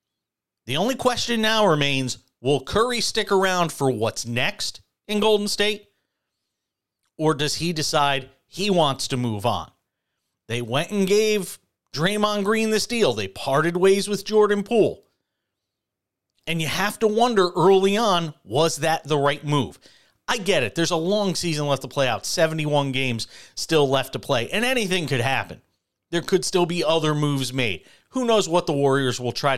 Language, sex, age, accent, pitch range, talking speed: English, male, 40-59, American, 135-200 Hz, 170 wpm